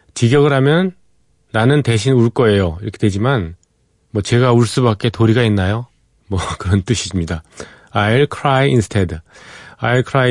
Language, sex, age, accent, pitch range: Korean, male, 30-49, native, 95-130 Hz